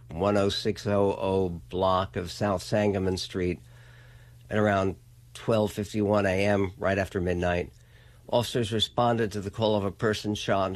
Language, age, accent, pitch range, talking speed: English, 60-79, American, 100-120 Hz, 130 wpm